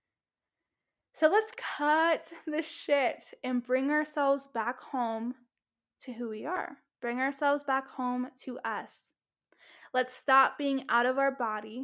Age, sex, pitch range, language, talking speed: 10-29, female, 240-295 Hz, English, 135 wpm